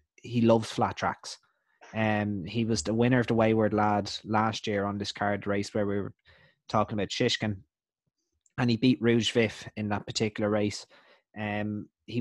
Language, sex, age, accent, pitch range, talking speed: English, male, 20-39, Irish, 105-115 Hz, 180 wpm